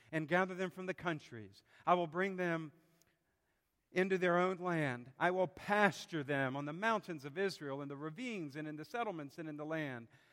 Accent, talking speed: American, 200 wpm